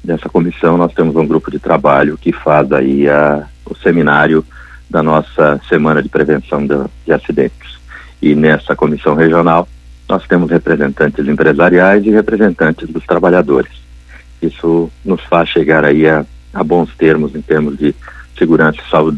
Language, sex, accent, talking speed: Portuguese, male, Brazilian, 155 wpm